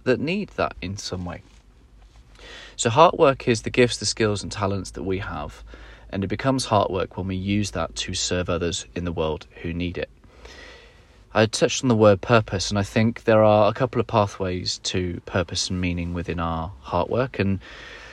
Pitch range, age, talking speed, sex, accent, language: 90-105 Hz, 30-49, 190 wpm, male, British, English